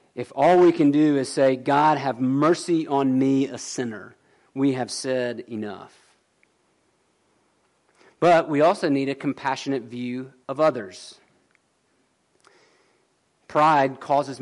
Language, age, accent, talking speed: English, 40-59, American, 120 wpm